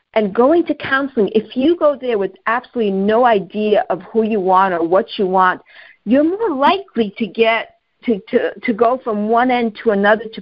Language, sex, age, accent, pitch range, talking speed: English, female, 50-69, American, 195-255 Hz, 200 wpm